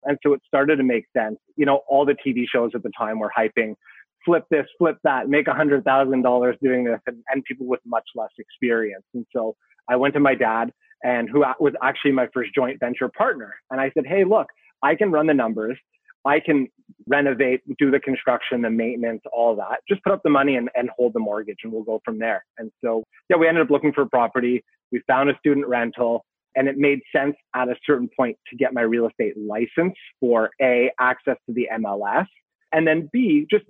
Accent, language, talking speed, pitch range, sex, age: American, English, 215 wpm, 120-150 Hz, male, 30-49